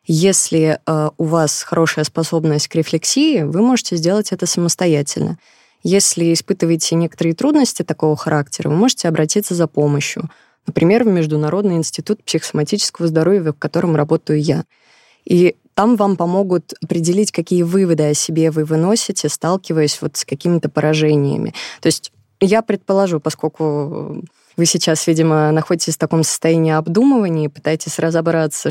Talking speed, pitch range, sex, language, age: 135 wpm, 155-185 Hz, female, Russian, 20-39